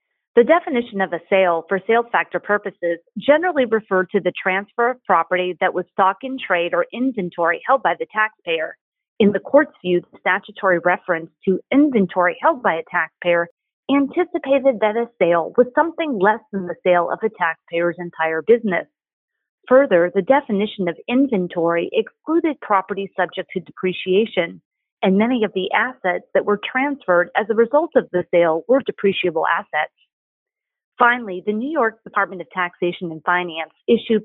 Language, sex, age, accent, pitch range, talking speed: English, female, 30-49, American, 175-250 Hz, 160 wpm